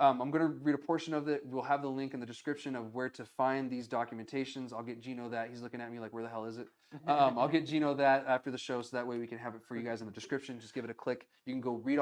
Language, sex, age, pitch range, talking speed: English, male, 20-39, 115-145 Hz, 330 wpm